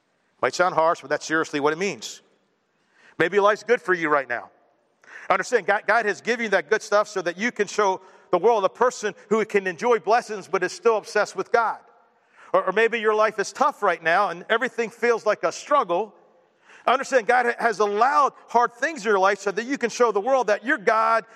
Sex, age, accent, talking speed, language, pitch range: male, 50-69, American, 215 wpm, English, 190-240 Hz